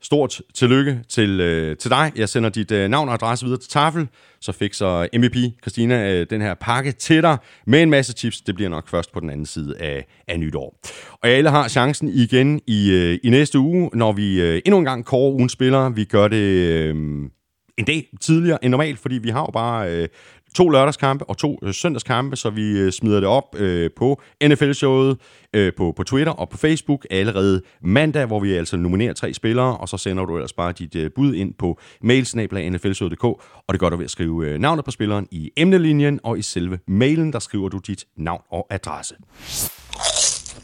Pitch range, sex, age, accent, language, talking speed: 95-135 Hz, male, 30-49, native, Danish, 200 wpm